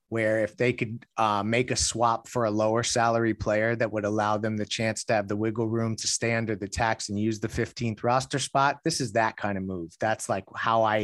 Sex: male